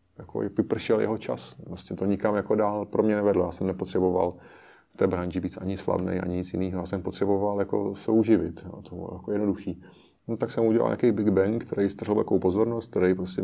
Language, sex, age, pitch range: Czech, male, 30-49, 95-105 Hz